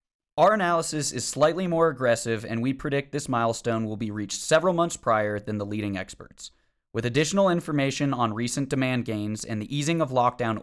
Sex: male